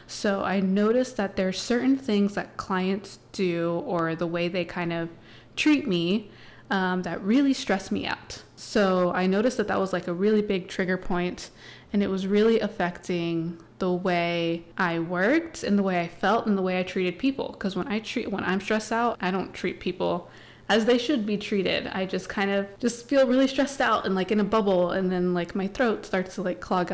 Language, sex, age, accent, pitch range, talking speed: English, female, 20-39, American, 180-215 Hz, 215 wpm